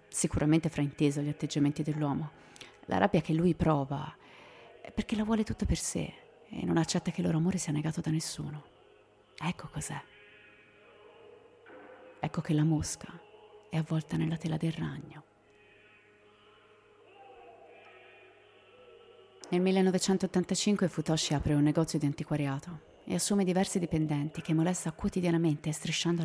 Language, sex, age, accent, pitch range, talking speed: Italian, female, 30-49, native, 150-185 Hz, 130 wpm